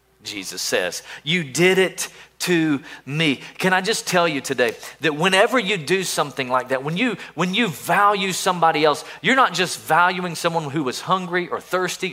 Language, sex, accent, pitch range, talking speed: English, male, American, 130-180 Hz, 180 wpm